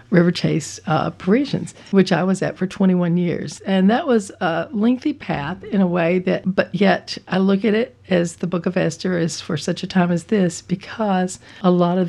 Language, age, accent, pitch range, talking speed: English, 50-69, American, 165-195 Hz, 215 wpm